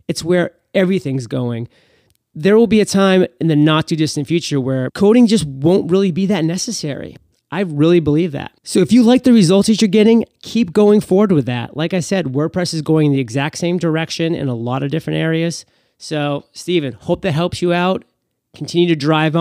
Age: 30-49